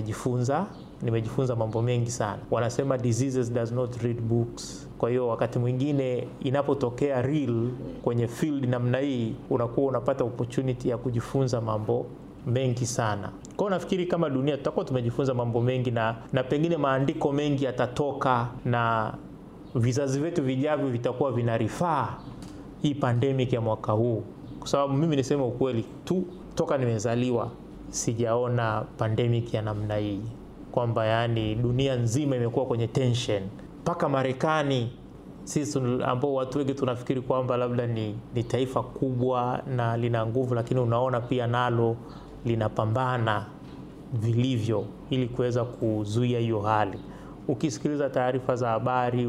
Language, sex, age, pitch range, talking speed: Swahili, male, 30-49, 115-135 Hz, 125 wpm